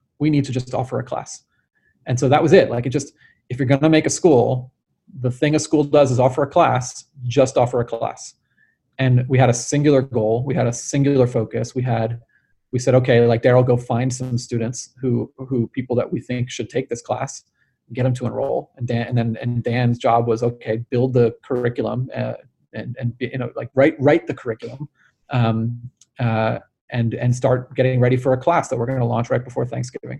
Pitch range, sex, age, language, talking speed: 120-130 Hz, male, 30-49, English, 225 wpm